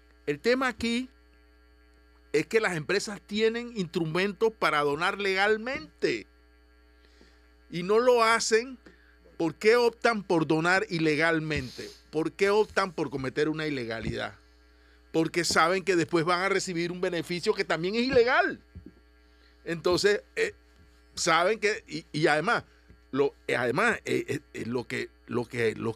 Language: Spanish